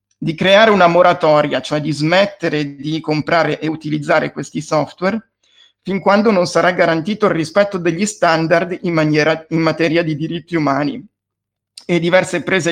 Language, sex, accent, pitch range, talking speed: Italian, male, native, 150-180 Hz, 145 wpm